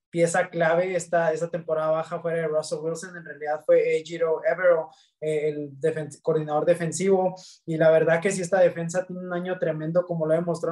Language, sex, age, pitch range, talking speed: English, male, 20-39, 160-180 Hz, 190 wpm